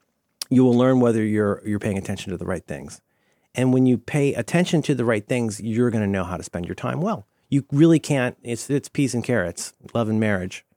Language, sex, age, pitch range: English, male, 40-59, 105-155 Hz